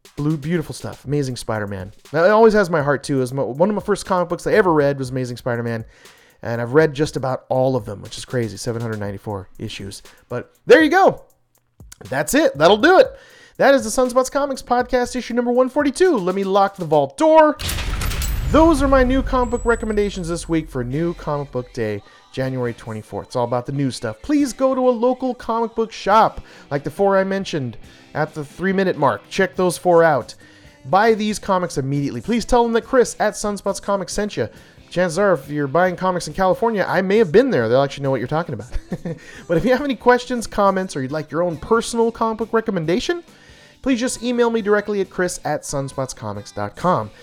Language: English